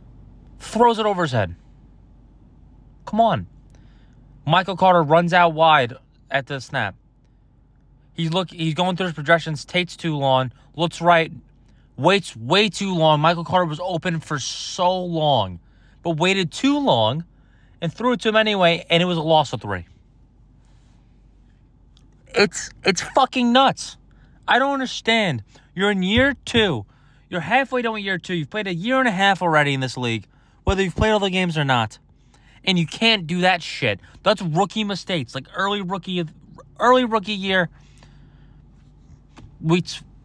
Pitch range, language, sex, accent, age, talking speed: 130-195 Hz, English, male, American, 20-39, 160 wpm